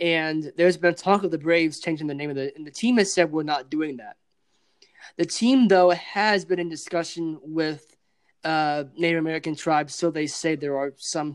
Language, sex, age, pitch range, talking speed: English, male, 20-39, 150-185 Hz, 205 wpm